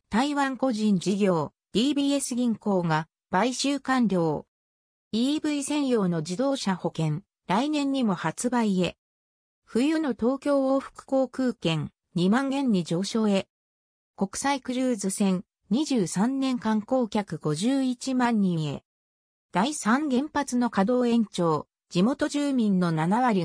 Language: Japanese